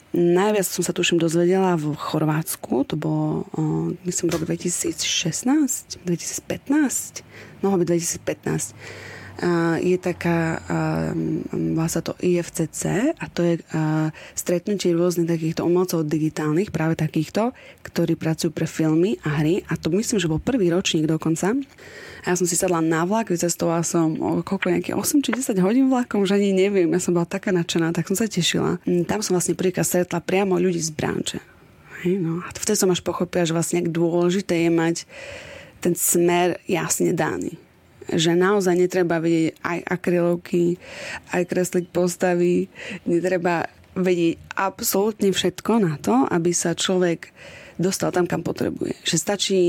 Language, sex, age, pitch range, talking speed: Slovak, female, 20-39, 165-180 Hz, 150 wpm